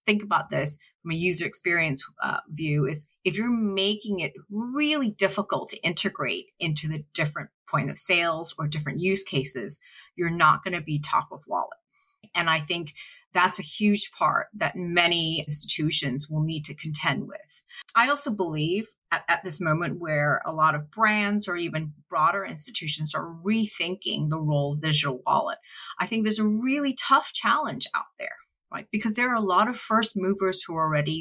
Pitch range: 155-215 Hz